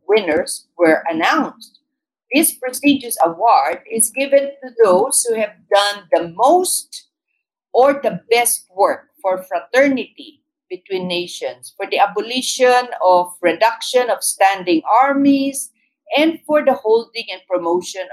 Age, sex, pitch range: 50-69, female, 190-290 Hz